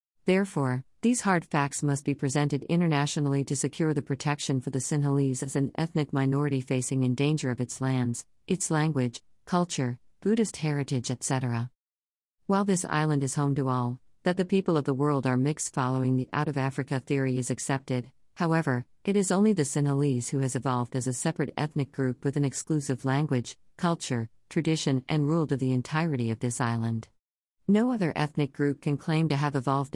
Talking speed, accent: 180 wpm, American